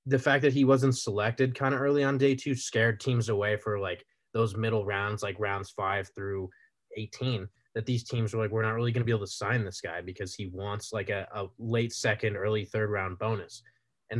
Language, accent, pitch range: English, American, 105-130 Hz